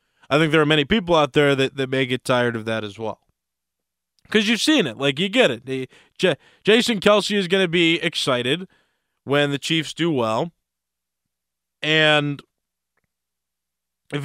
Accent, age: American, 20-39